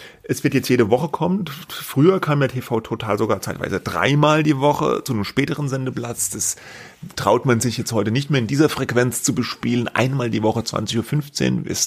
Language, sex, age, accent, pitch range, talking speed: German, male, 30-49, German, 110-145 Hz, 195 wpm